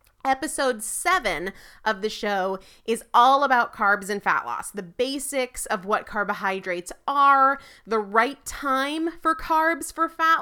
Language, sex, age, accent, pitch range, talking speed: English, female, 30-49, American, 210-285 Hz, 145 wpm